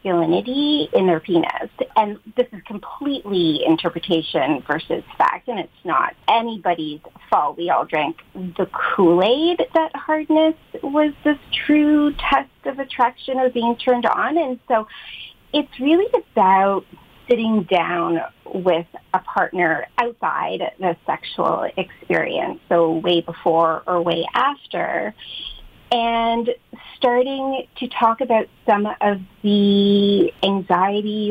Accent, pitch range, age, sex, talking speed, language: American, 180-255 Hz, 30-49, female, 115 wpm, English